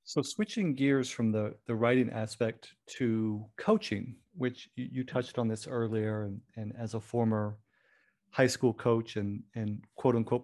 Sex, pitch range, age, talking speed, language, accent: male, 105-130 Hz, 40-59, 165 wpm, English, American